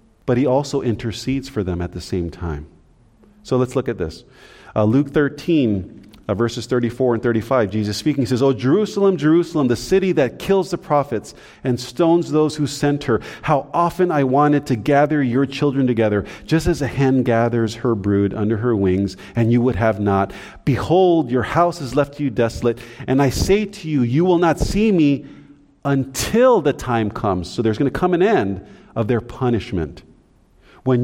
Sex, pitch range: male, 110-145 Hz